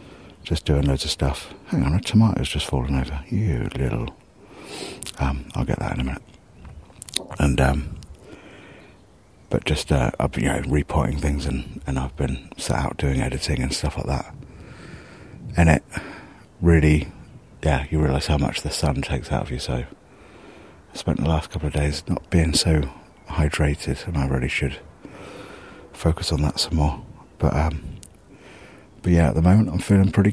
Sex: male